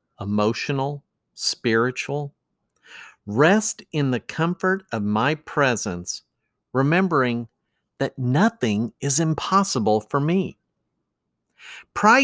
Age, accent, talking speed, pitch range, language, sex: 50-69, American, 85 wpm, 110-160 Hz, English, male